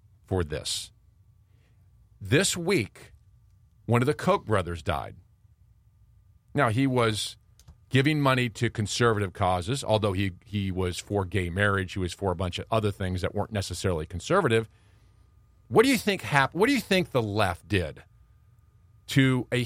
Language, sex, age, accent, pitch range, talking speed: English, male, 40-59, American, 100-130 Hz, 155 wpm